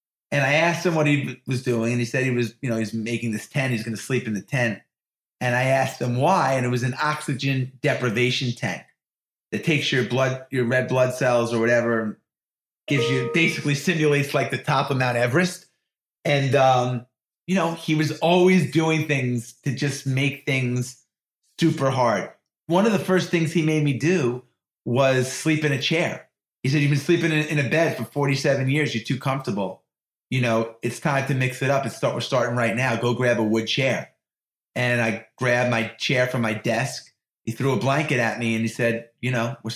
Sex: male